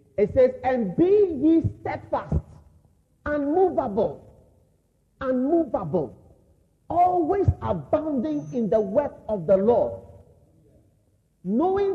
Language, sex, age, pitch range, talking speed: English, male, 40-59, 235-370 Hz, 85 wpm